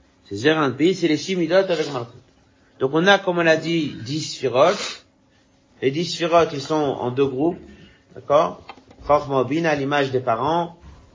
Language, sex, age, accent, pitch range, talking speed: French, male, 50-69, French, 115-150 Hz, 165 wpm